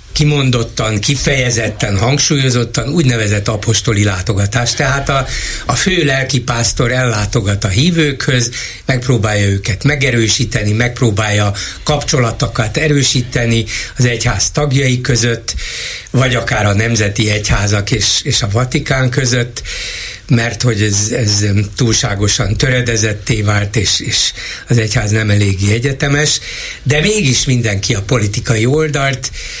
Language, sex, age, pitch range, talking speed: Hungarian, male, 60-79, 110-145 Hz, 110 wpm